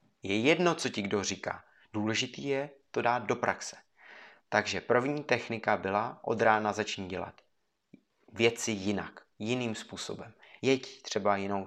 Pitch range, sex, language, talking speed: 100-120 Hz, male, Czech, 135 wpm